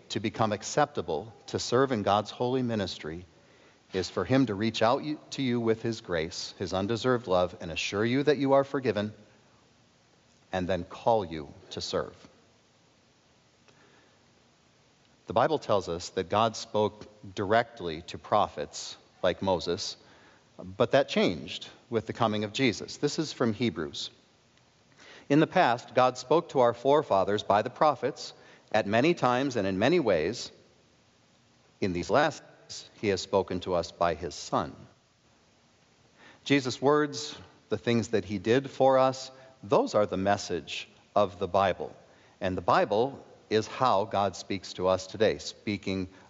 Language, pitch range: English, 95-130 Hz